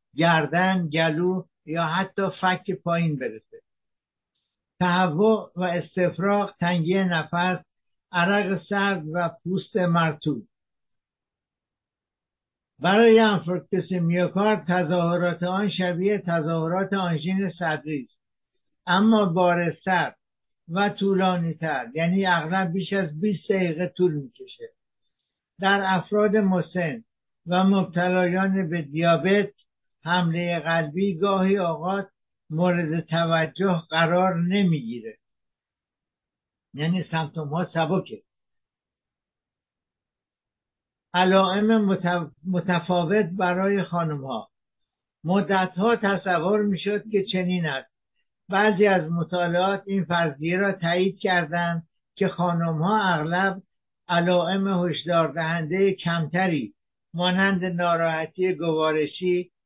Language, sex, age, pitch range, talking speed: English, male, 60-79, 170-195 Hz, 90 wpm